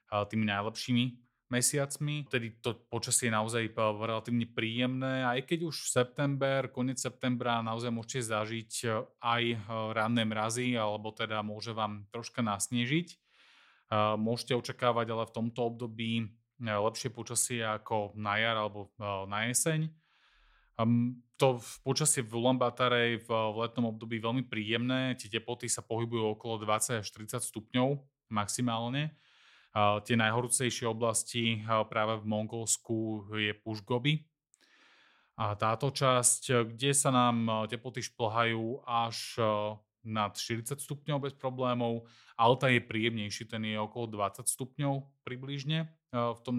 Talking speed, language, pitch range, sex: 120 wpm, Slovak, 110-130 Hz, male